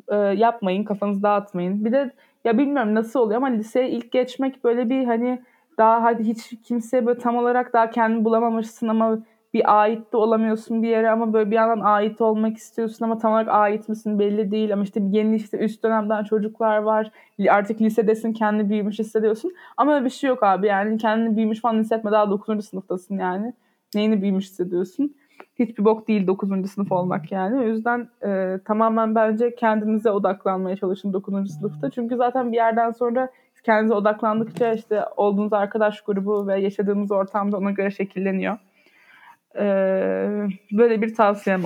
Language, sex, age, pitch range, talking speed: Turkish, female, 20-39, 195-230 Hz, 165 wpm